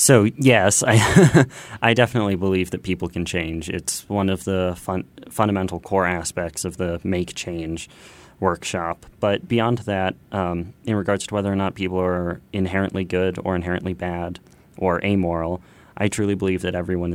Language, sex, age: English, male, 30-49